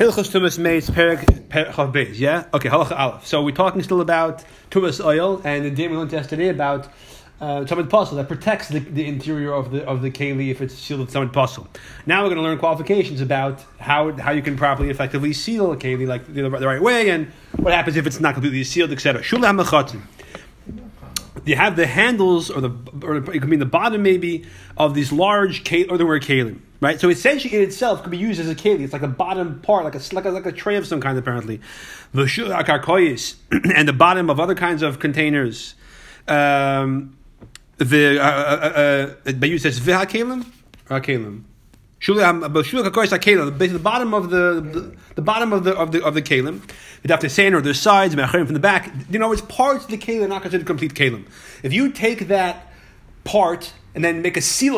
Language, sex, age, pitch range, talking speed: English, male, 30-49, 140-185 Hz, 195 wpm